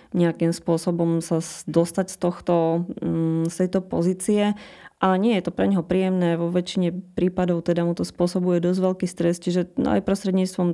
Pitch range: 165-185 Hz